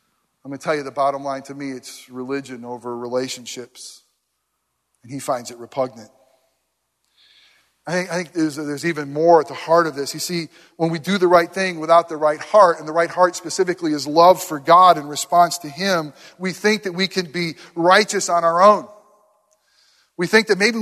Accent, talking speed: American, 200 wpm